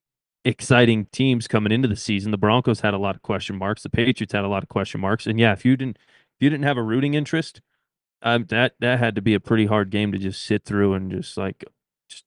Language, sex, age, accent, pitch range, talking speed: English, male, 20-39, American, 105-130 Hz, 255 wpm